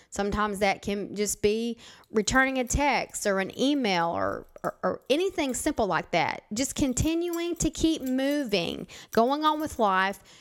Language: English